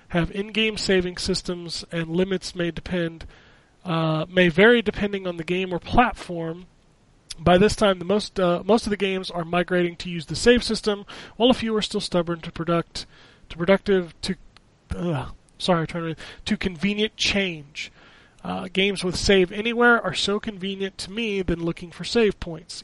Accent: American